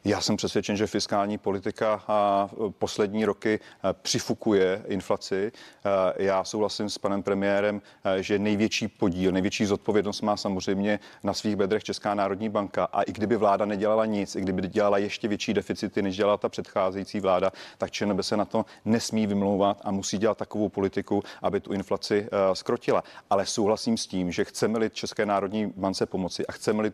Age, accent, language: 30-49, native, Czech